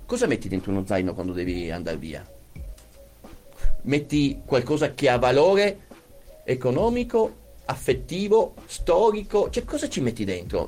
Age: 40-59